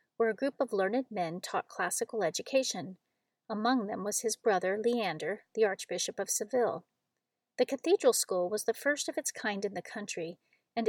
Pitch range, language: 205-260 Hz, English